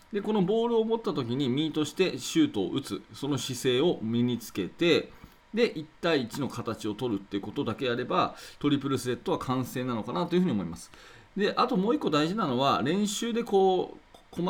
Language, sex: Japanese, male